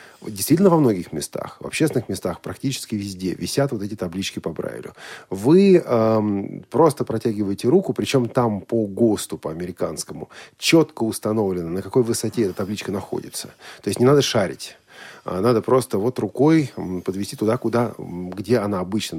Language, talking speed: Russian, 150 wpm